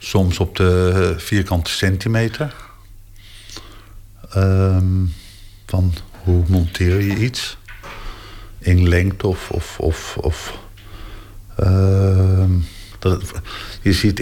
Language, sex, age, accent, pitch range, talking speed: Dutch, male, 50-69, Dutch, 95-105 Hz, 85 wpm